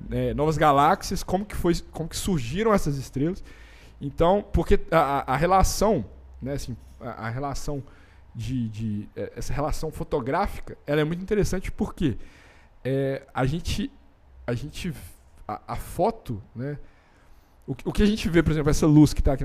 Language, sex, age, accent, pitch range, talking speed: Portuguese, male, 20-39, Brazilian, 130-180 Hz, 135 wpm